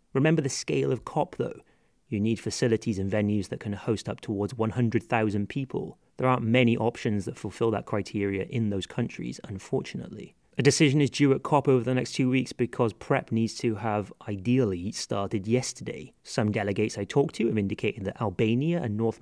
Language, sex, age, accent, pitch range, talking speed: English, male, 30-49, British, 100-130 Hz, 185 wpm